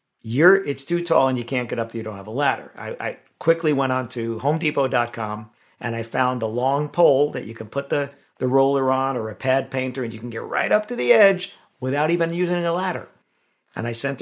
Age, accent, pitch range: 50-69, American, 120-145 Hz